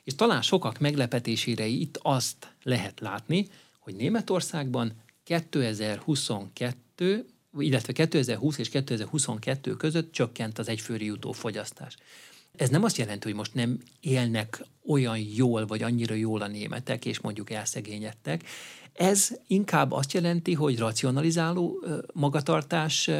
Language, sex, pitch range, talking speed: Hungarian, male, 115-150 Hz, 120 wpm